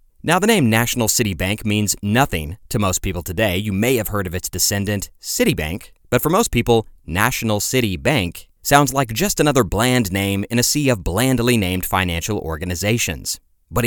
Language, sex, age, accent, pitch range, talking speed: English, male, 30-49, American, 95-125 Hz, 180 wpm